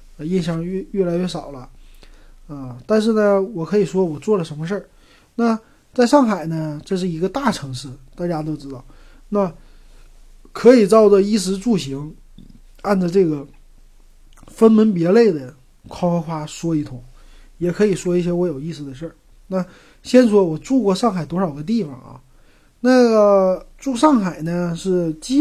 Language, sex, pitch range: Chinese, male, 155-210 Hz